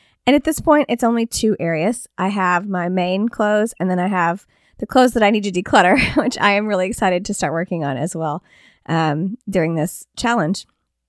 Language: English